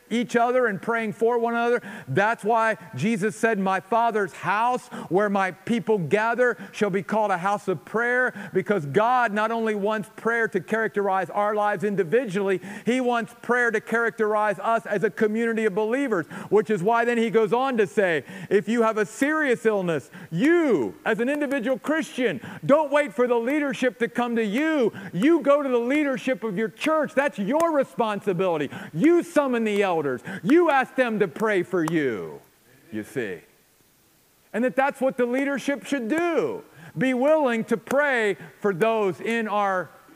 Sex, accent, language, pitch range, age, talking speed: male, American, English, 205-255 Hz, 50-69, 175 wpm